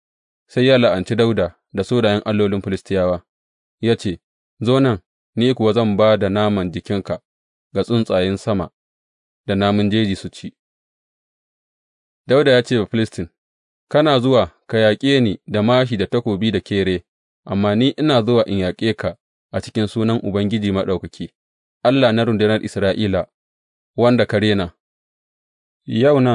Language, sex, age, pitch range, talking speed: English, male, 30-49, 95-115 Hz, 115 wpm